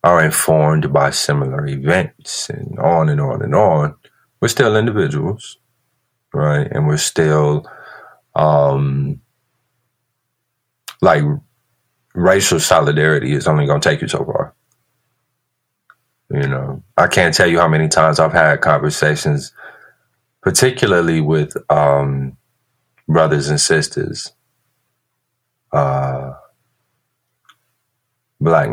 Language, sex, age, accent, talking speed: English, male, 30-49, American, 105 wpm